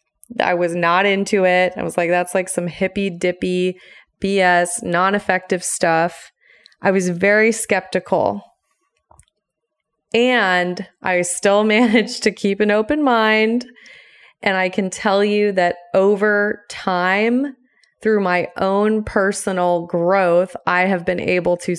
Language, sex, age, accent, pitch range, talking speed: English, female, 20-39, American, 180-210 Hz, 130 wpm